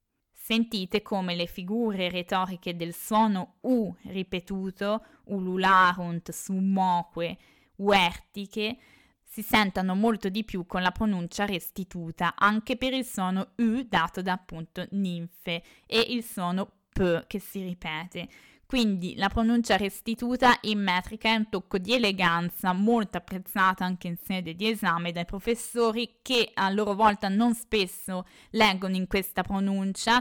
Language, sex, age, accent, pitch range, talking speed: Italian, female, 20-39, native, 180-215 Hz, 135 wpm